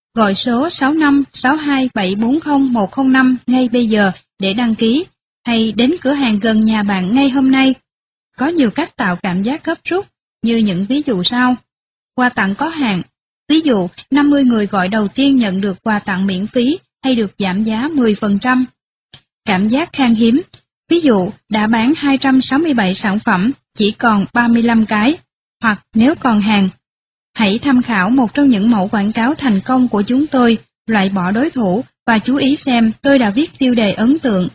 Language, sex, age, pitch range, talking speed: Vietnamese, female, 20-39, 210-270 Hz, 175 wpm